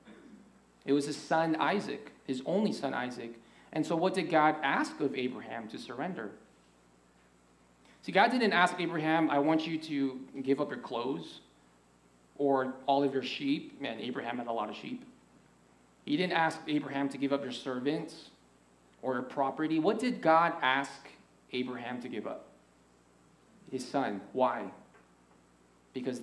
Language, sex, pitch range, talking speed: English, male, 100-145 Hz, 155 wpm